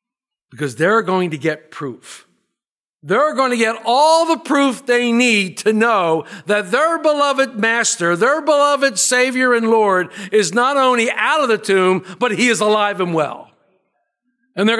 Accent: American